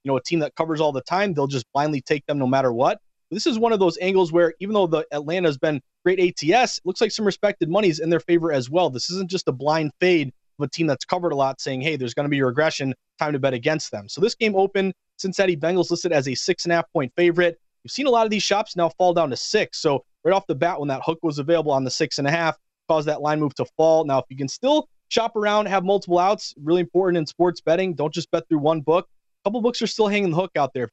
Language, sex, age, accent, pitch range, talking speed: English, male, 30-49, American, 150-185 Hz, 290 wpm